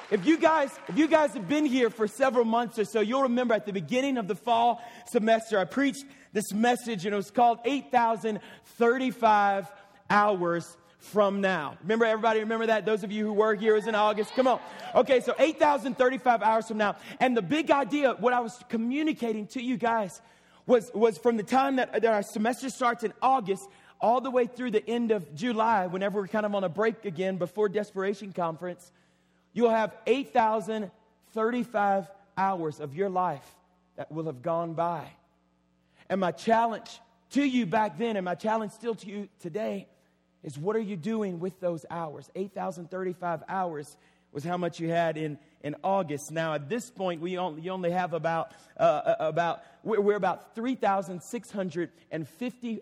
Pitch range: 180-235 Hz